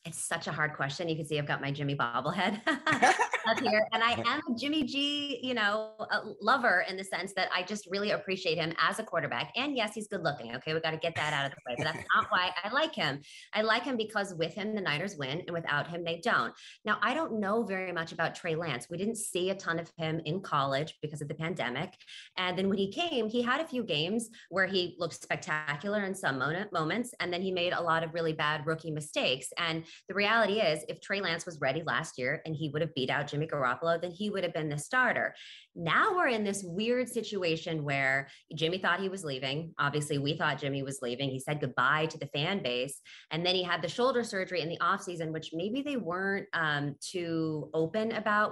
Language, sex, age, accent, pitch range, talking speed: English, female, 20-39, American, 150-195 Hz, 235 wpm